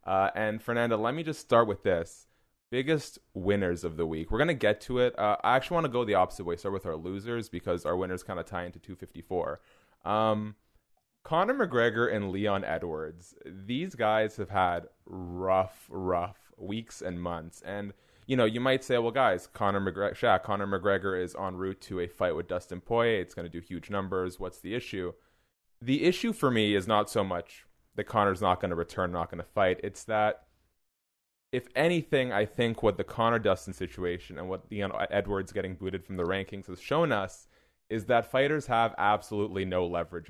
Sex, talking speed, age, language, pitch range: male, 195 wpm, 20-39, English, 90-115 Hz